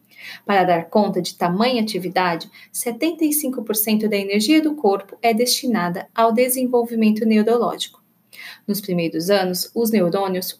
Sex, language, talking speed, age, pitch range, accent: female, Portuguese, 120 wpm, 20-39, 195-240 Hz, Brazilian